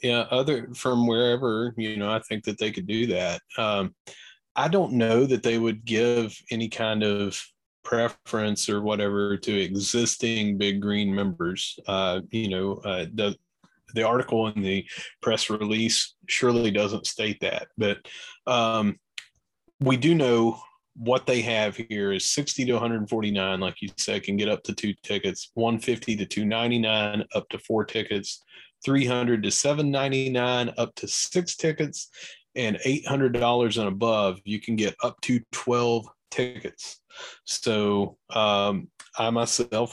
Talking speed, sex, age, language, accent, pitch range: 155 wpm, male, 30-49, English, American, 100-120 Hz